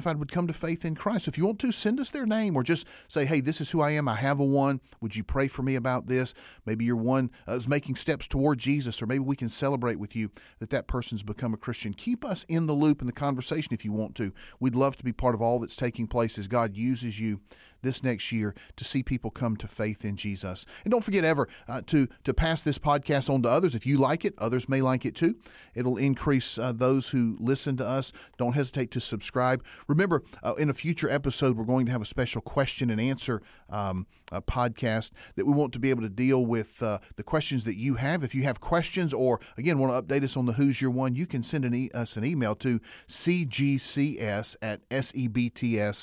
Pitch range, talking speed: 115-140 Hz, 245 wpm